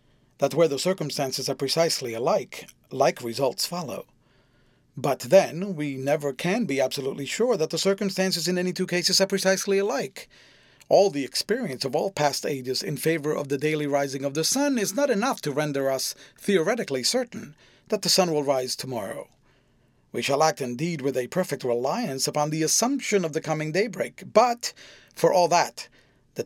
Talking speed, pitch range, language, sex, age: 175 wpm, 140-190 Hz, English, male, 40-59